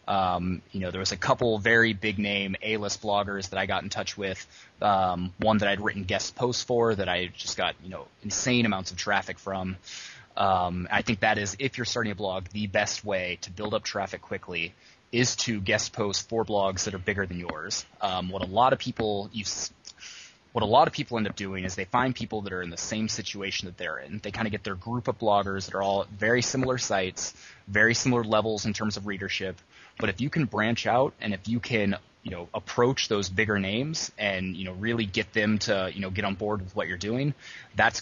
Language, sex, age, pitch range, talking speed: English, male, 20-39, 95-110 Hz, 230 wpm